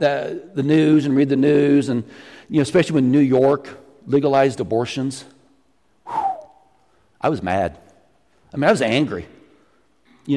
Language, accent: English, American